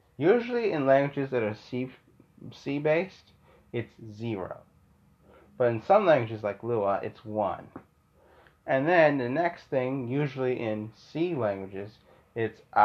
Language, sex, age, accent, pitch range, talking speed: English, male, 30-49, American, 105-130 Hz, 120 wpm